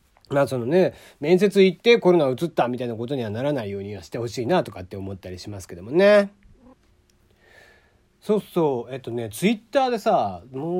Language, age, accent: Japanese, 40-59, native